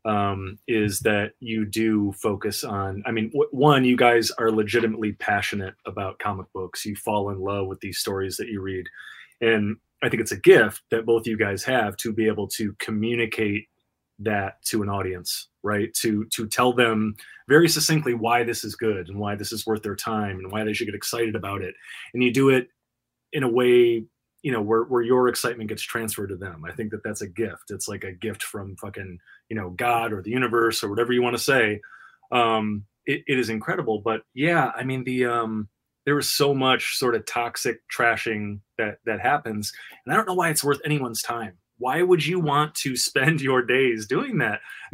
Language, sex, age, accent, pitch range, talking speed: English, male, 30-49, American, 105-125 Hz, 210 wpm